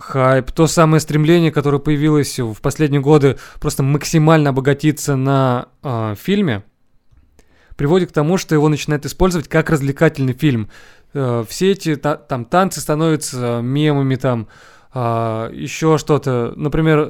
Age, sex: 20-39, male